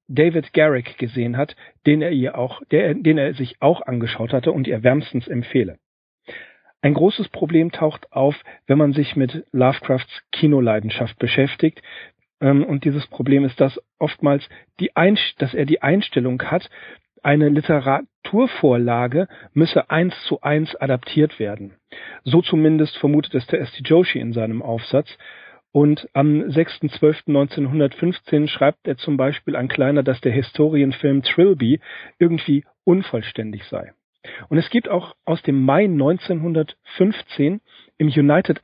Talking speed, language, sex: 135 wpm, German, male